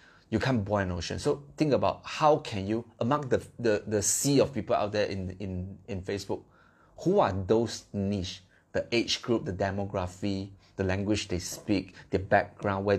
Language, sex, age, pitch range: Chinese, male, 30-49, 95-110 Hz